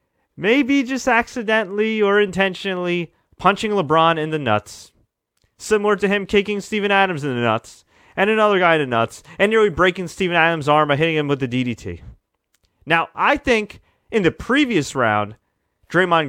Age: 30-49